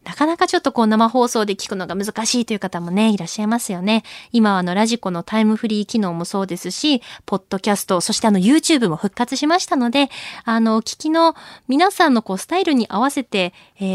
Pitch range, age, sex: 200-280 Hz, 20-39, female